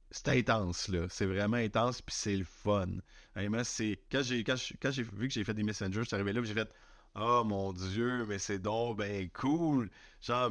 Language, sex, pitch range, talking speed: French, male, 90-115 Hz, 235 wpm